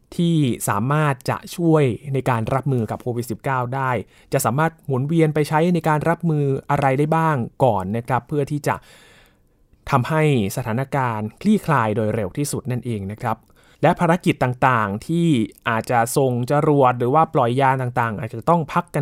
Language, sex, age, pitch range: Thai, male, 20-39, 120-155 Hz